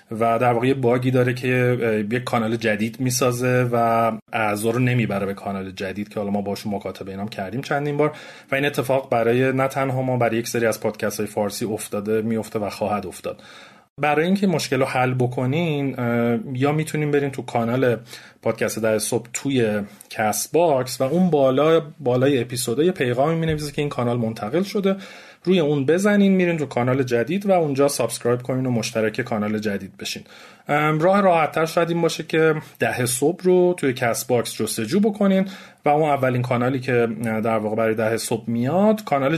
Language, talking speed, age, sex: Persian, 175 wpm, 30-49, male